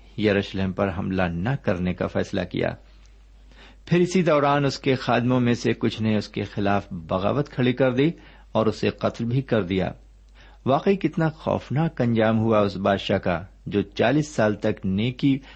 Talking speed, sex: 170 wpm, male